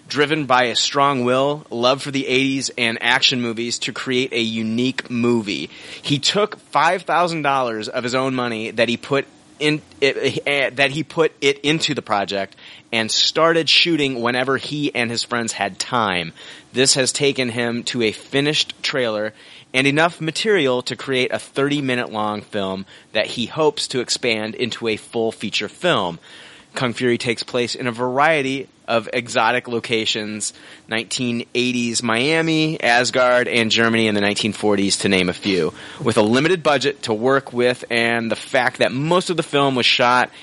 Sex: male